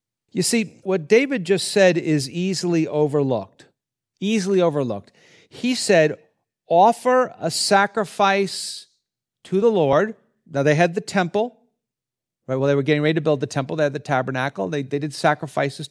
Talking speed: 160 wpm